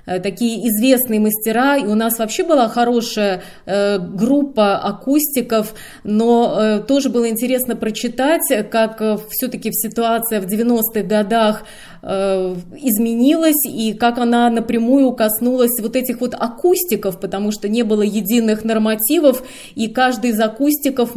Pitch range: 210-255 Hz